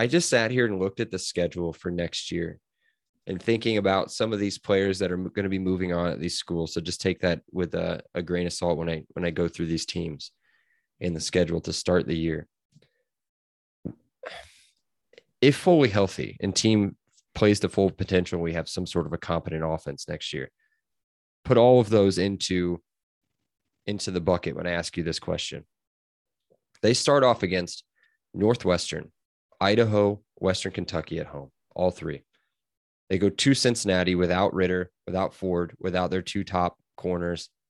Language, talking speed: English, 180 wpm